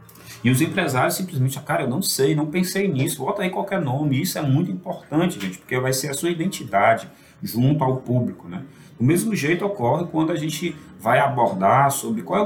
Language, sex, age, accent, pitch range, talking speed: Portuguese, male, 40-59, Brazilian, 115-170 Hz, 200 wpm